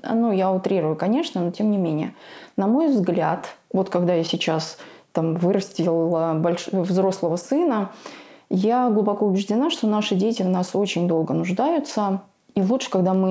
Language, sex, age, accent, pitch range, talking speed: Russian, female, 20-39, native, 180-225 Hz, 160 wpm